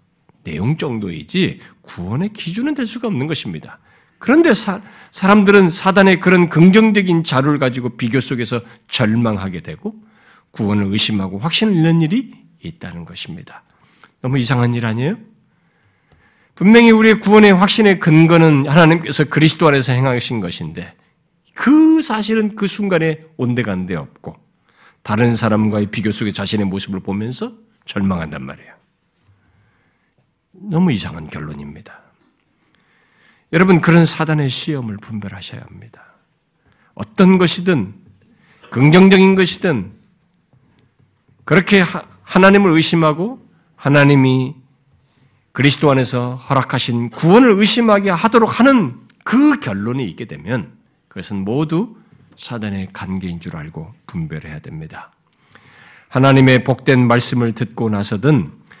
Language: Korean